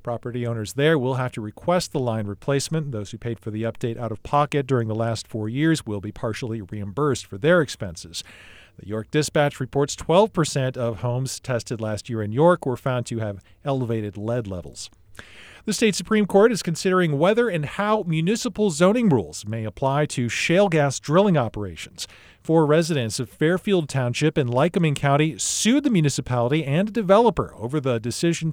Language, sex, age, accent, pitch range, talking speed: English, male, 40-59, American, 115-155 Hz, 180 wpm